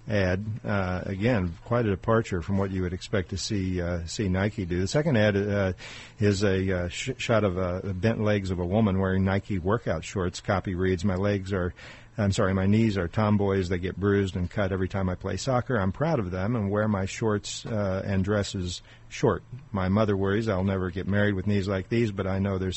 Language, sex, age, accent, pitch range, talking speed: English, male, 50-69, American, 95-115 Hz, 225 wpm